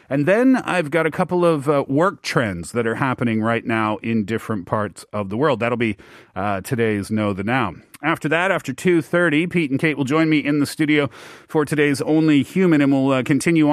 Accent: American